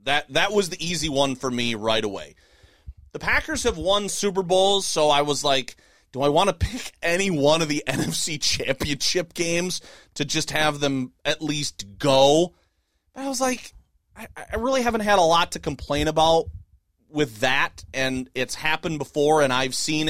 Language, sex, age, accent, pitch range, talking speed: English, male, 30-49, American, 125-175 Hz, 185 wpm